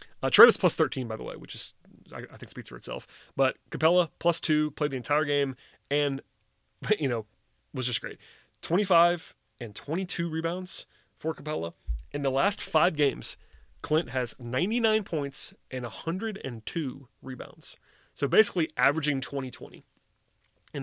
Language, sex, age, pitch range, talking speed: English, male, 30-49, 120-145 Hz, 150 wpm